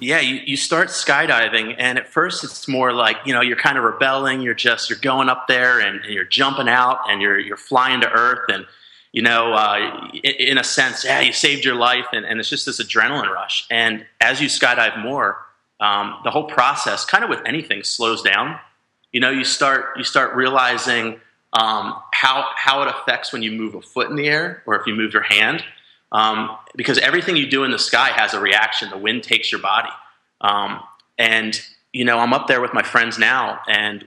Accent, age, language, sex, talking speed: American, 30-49, English, male, 215 wpm